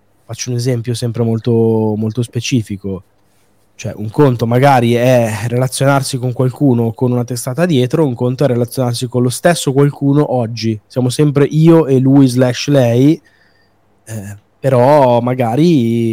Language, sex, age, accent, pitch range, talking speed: Italian, male, 20-39, native, 110-140 Hz, 140 wpm